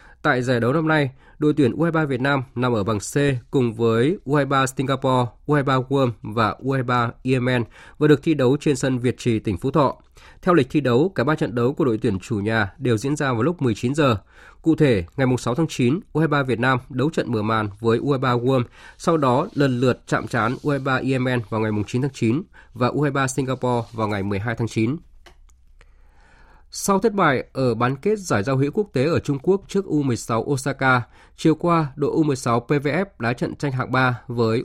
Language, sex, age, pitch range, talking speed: Vietnamese, male, 20-39, 115-150 Hz, 205 wpm